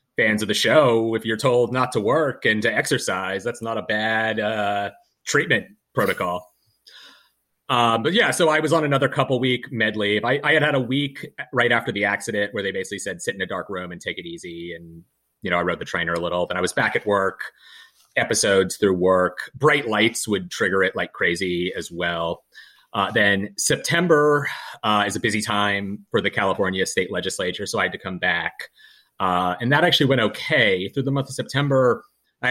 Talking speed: 210 wpm